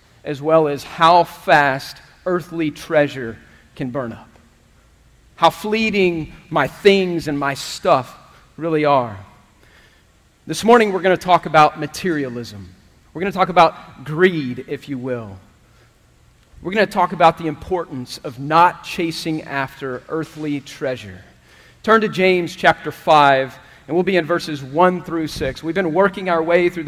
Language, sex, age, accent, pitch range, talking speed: English, male, 40-59, American, 145-180 Hz, 150 wpm